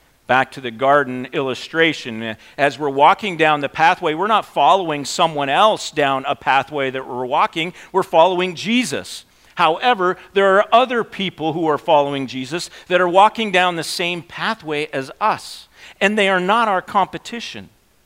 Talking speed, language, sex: 165 wpm, English, male